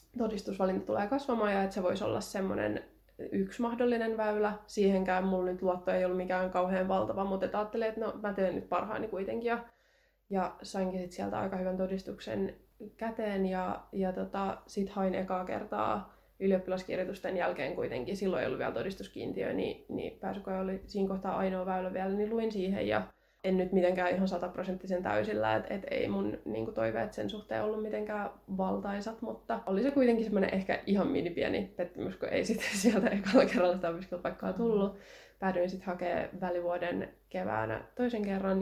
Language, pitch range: Finnish, 180-205 Hz